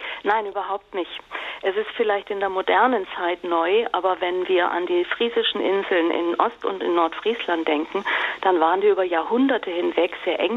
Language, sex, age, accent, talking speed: German, female, 40-59, German, 180 wpm